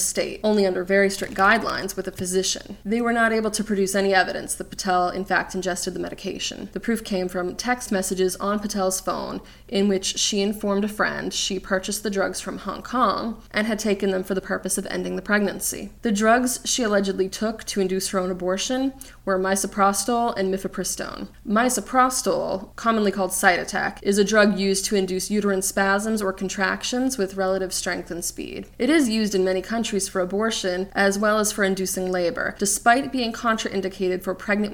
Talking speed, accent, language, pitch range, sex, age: 190 wpm, American, English, 185-215 Hz, female, 20-39